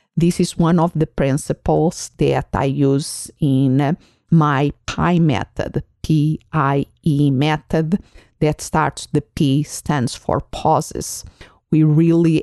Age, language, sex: 50-69, English, female